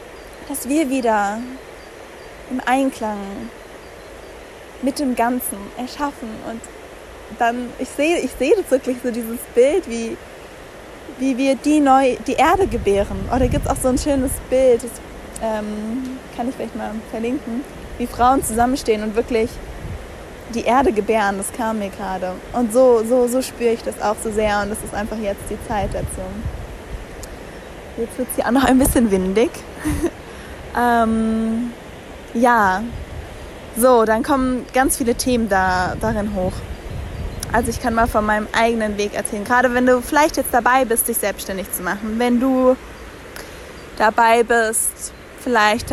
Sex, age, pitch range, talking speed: female, 20-39, 215-255 Hz, 155 wpm